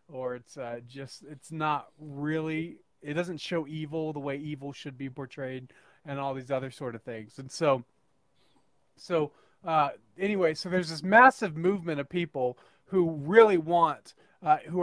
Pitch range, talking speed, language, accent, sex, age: 140-165 Hz, 165 wpm, English, American, male, 30-49